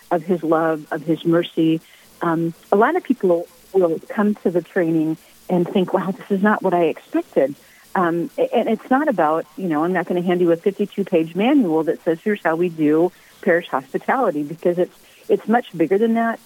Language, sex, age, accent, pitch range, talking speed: English, female, 50-69, American, 160-190 Hz, 210 wpm